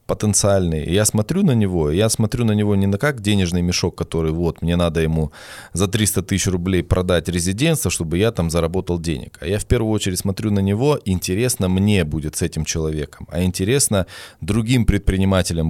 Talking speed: 185 wpm